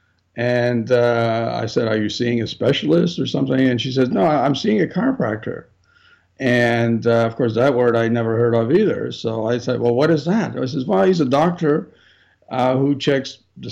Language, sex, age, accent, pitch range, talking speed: English, male, 60-79, American, 120-150 Hz, 205 wpm